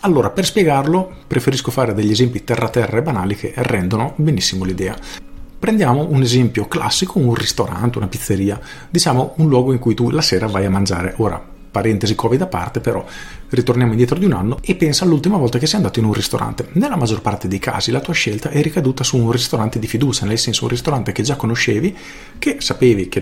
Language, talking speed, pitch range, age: Italian, 205 wpm, 105-140 Hz, 40-59